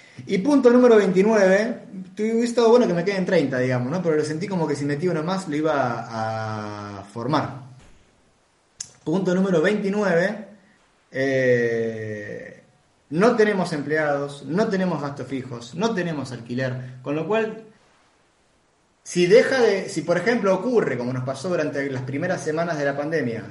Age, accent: 20-39, Argentinian